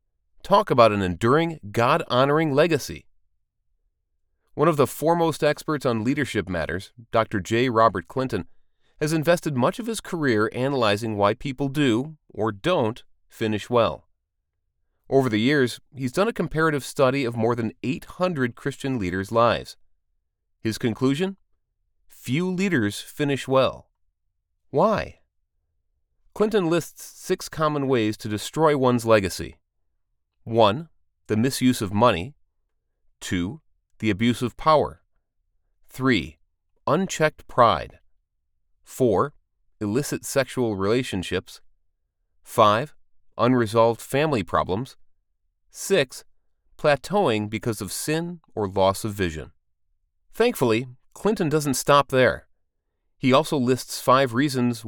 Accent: American